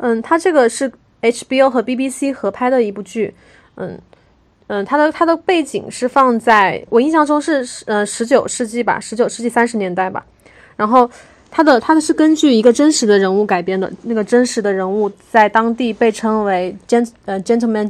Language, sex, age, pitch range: Chinese, female, 20-39, 210-255 Hz